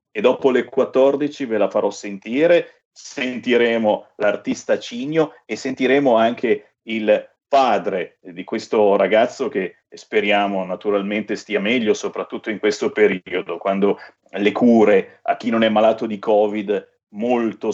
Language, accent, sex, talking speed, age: Italian, native, male, 130 wpm, 40-59